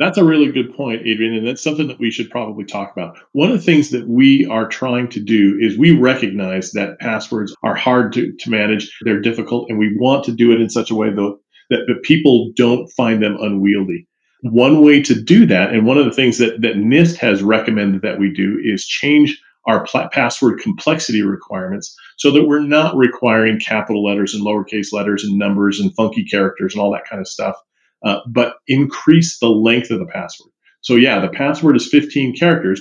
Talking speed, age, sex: 210 wpm, 40-59, male